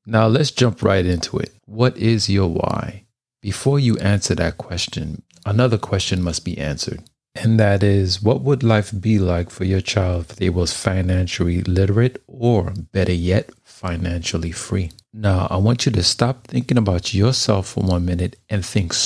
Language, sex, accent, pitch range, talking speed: English, male, American, 95-115 Hz, 175 wpm